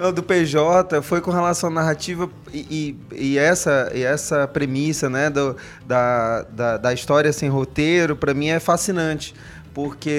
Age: 20-39